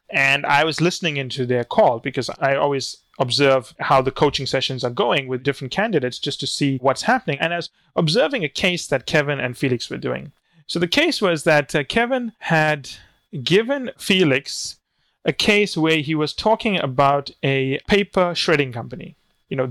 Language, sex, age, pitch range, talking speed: English, male, 30-49, 135-170 Hz, 185 wpm